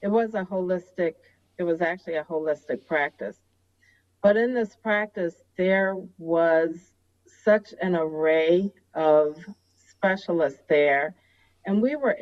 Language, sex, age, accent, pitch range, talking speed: English, female, 40-59, American, 145-185 Hz, 125 wpm